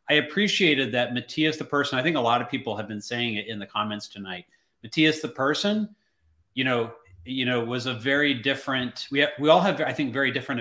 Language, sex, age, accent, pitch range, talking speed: English, male, 30-49, American, 110-135 Hz, 225 wpm